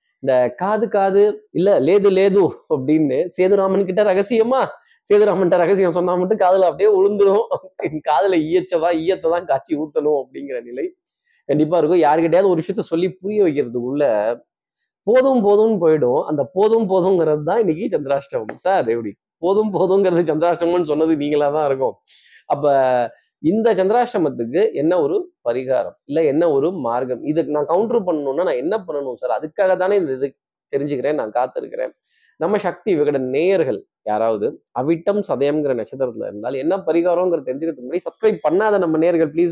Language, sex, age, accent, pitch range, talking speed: Tamil, male, 20-39, native, 150-220 Hz, 140 wpm